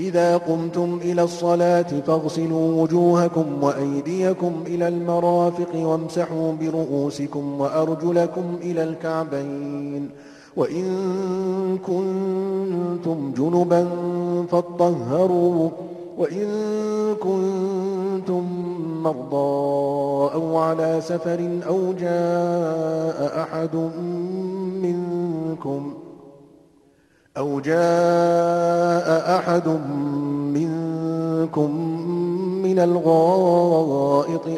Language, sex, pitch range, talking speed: Arabic, male, 160-175 Hz, 60 wpm